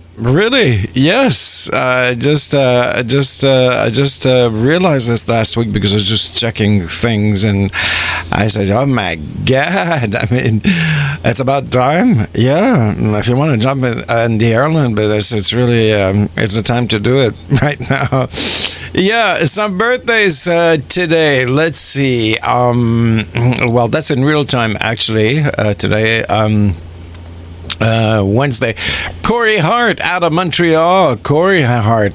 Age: 50-69